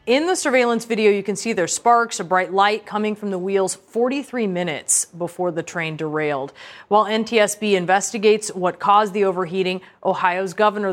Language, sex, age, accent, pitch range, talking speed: English, female, 30-49, American, 175-215 Hz, 170 wpm